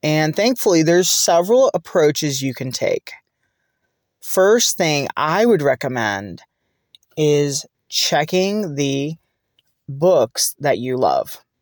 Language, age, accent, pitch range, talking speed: English, 30-49, American, 145-190 Hz, 105 wpm